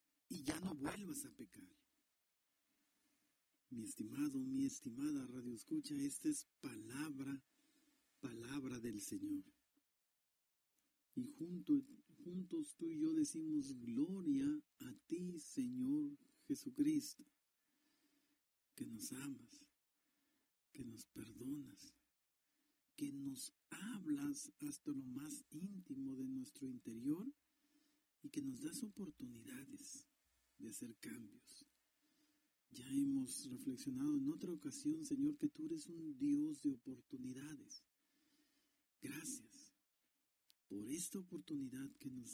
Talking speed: 100 wpm